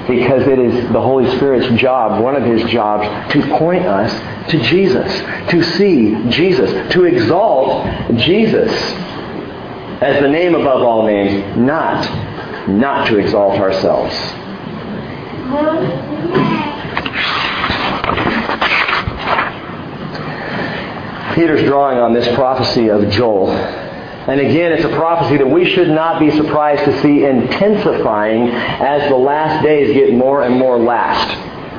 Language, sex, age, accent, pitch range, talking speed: English, male, 50-69, American, 125-160 Hz, 120 wpm